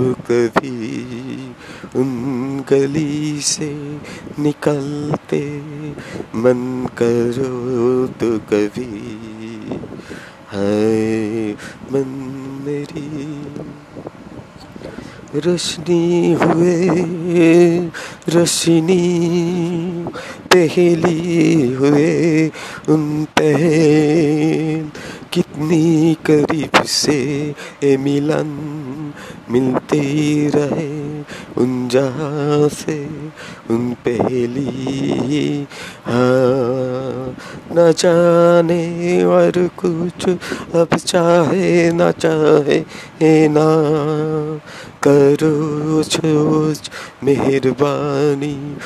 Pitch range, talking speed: 135-160 Hz, 35 wpm